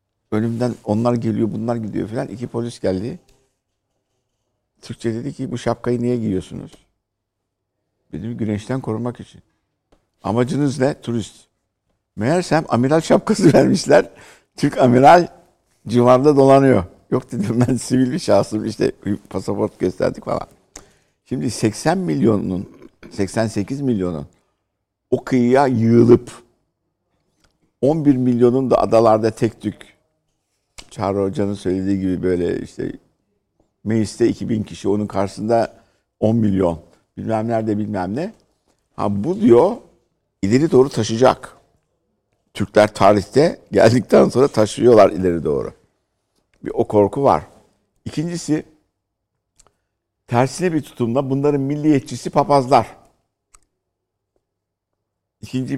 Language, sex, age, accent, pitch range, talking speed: Turkish, male, 60-79, native, 100-125 Hz, 105 wpm